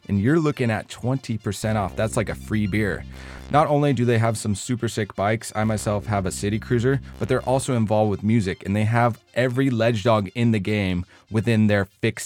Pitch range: 100-130 Hz